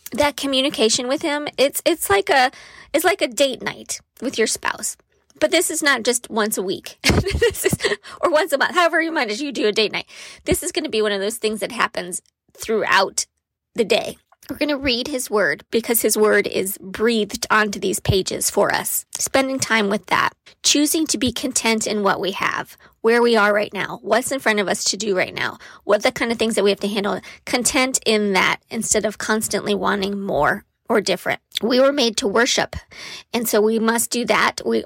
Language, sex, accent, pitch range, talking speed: English, female, American, 215-280 Hz, 215 wpm